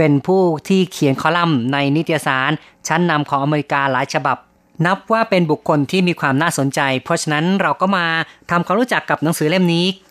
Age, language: 30-49, Thai